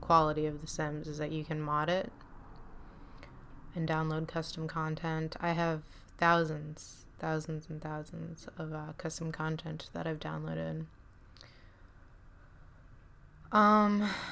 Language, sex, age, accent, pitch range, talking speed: English, female, 20-39, American, 110-175 Hz, 115 wpm